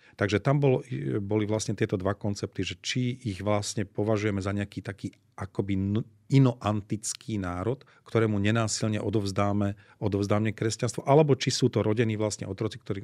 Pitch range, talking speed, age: 100-115 Hz, 145 wpm, 40-59